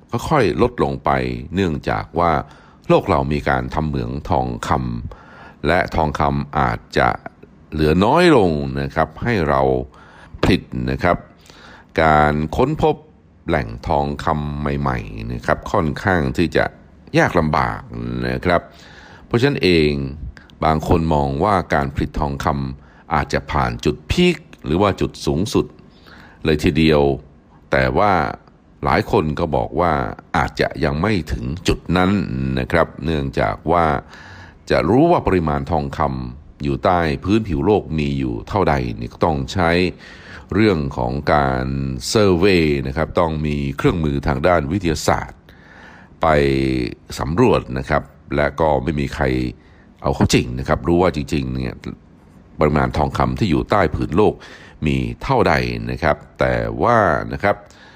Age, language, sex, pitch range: 60-79, Thai, male, 65-80 Hz